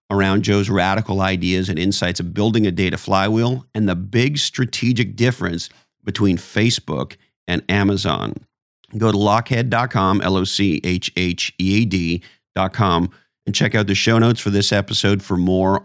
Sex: male